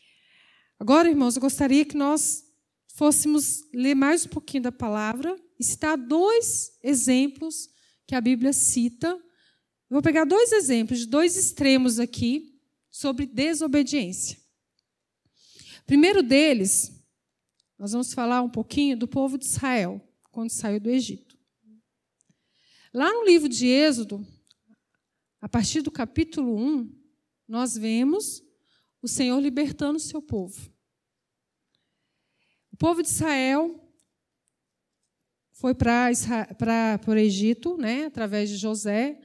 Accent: Brazilian